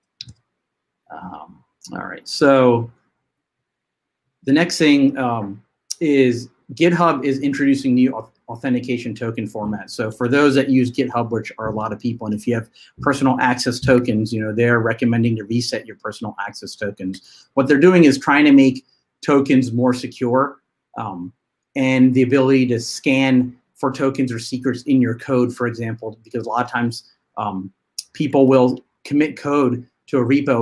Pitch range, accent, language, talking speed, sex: 115-135 Hz, American, English, 165 wpm, male